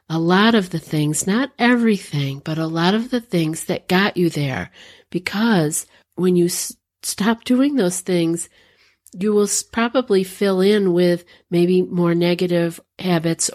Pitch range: 155-195 Hz